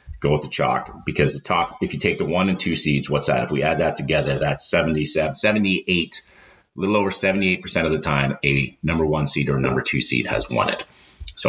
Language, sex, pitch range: English, male, 75-95 Hz